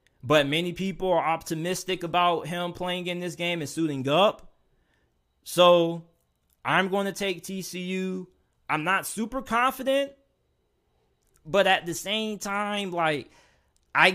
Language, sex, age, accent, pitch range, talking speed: English, male, 20-39, American, 145-190 Hz, 130 wpm